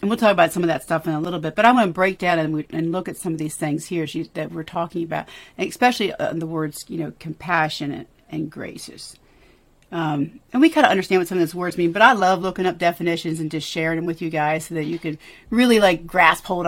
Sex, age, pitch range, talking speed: female, 40-59, 160-185 Hz, 265 wpm